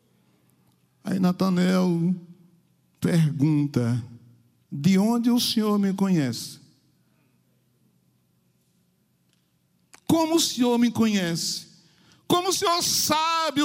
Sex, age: male, 60-79